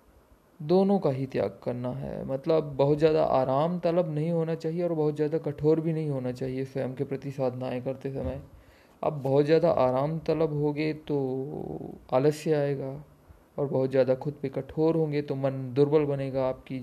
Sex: male